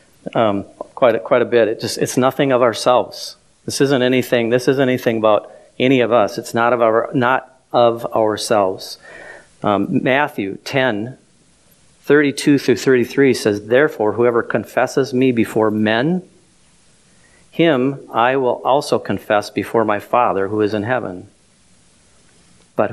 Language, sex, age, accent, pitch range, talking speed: English, male, 40-59, American, 100-125 Hz, 140 wpm